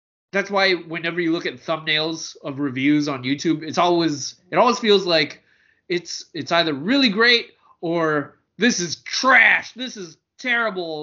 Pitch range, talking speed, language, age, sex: 150-195 Hz, 160 wpm, English, 20-39, male